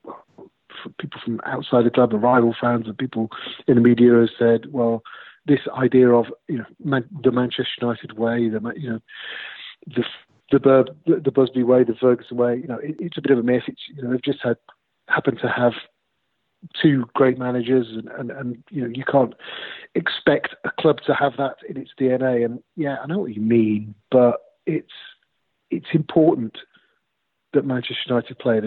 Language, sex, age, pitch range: English, male, 40-59, 120-140 Hz